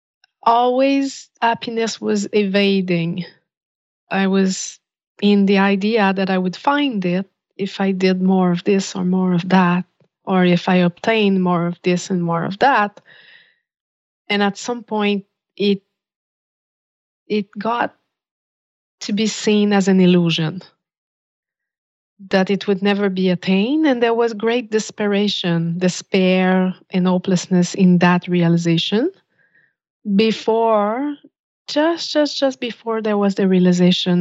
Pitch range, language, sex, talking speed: 180-225 Hz, English, female, 130 wpm